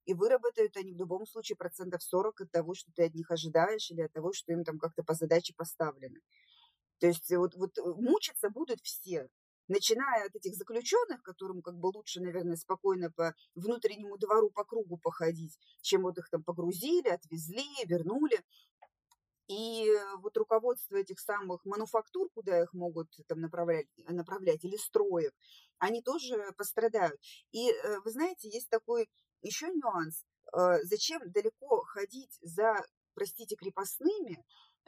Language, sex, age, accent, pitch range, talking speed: Russian, female, 20-39, native, 180-295 Hz, 145 wpm